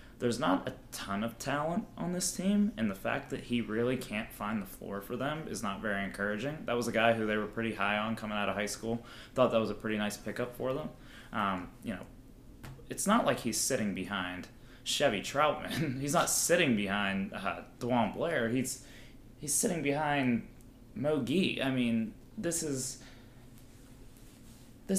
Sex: male